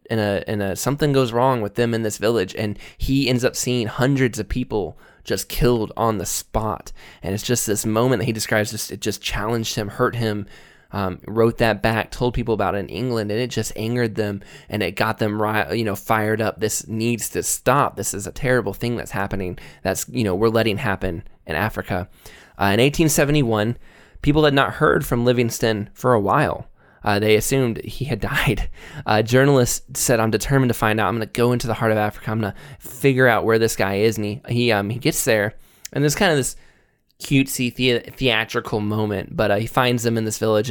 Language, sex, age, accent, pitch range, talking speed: English, male, 20-39, American, 105-125 Hz, 215 wpm